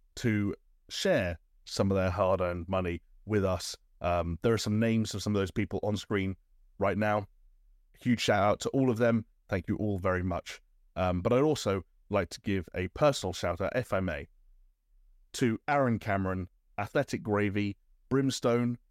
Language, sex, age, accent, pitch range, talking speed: English, male, 30-49, British, 95-115 Hz, 170 wpm